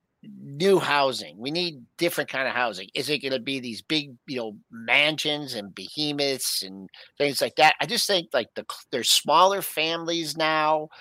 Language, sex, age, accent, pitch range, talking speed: English, male, 50-69, American, 125-165 Hz, 180 wpm